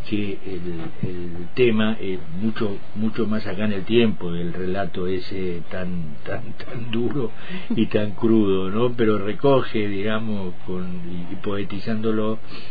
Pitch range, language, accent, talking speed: 90-110 Hz, Spanish, Argentinian, 145 wpm